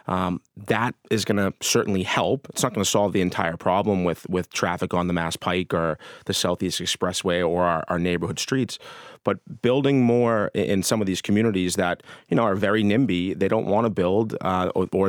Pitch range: 90-110 Hz